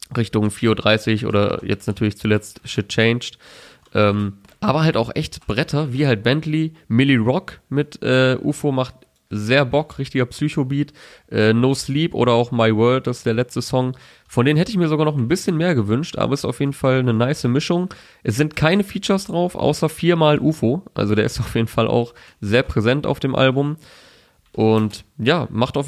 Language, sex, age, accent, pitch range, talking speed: German, male, 20-39, German, 110-130 Hz, 190 wpm